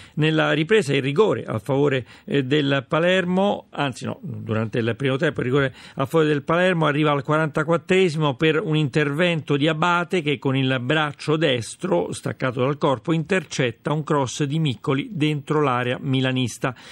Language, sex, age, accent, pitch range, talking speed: Italian, male, 40-59, native, 130-165 Hz, 155 wpm